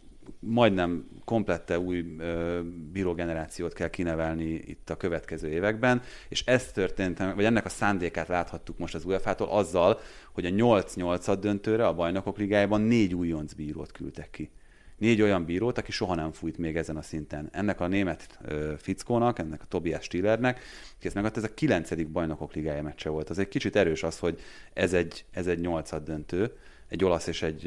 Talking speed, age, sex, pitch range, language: 180 wpm, 30-49, male, 85-105 Hz, Hungarian